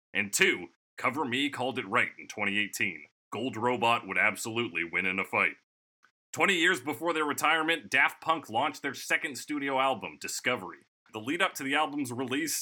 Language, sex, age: English, male, 30-49